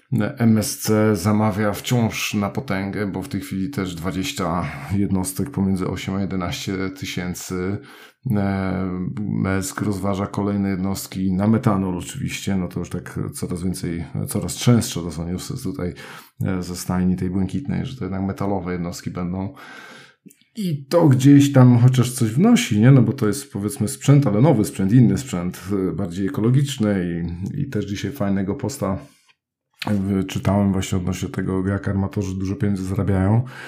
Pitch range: 95-110 Hz